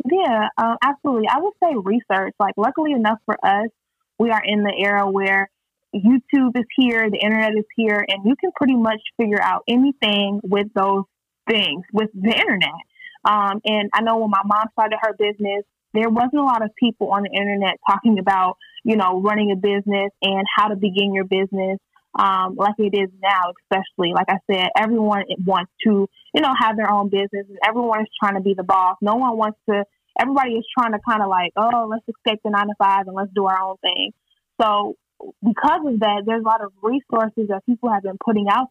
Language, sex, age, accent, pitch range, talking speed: English, female, 10-29, American, 200-235 Hz, 210 wpm